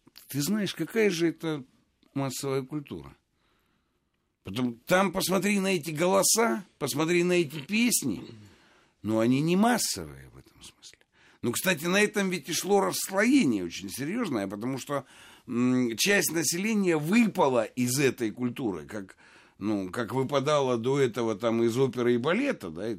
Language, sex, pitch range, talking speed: Russian, male, 105-170 Hz, 140 wpm